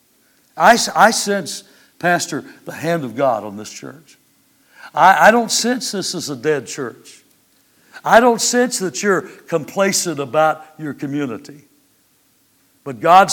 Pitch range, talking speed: 150-200 Hz, 140 wpm